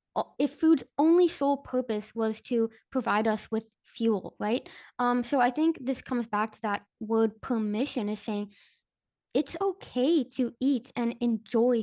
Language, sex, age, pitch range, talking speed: English, female, 10-29, 225-260 Hz, 155 wpm